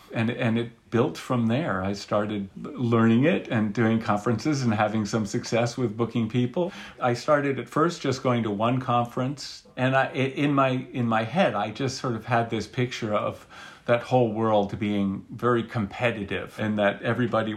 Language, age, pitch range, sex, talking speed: English, 50-69, 105-125 Hz, male, 180 wpm